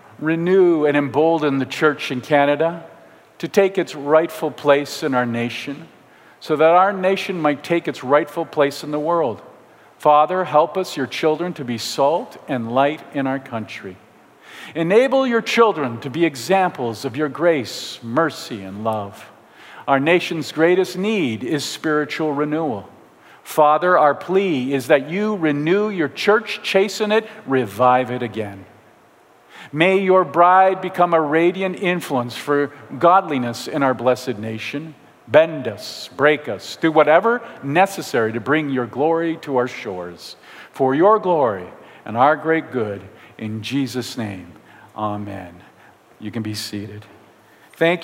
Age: 50-69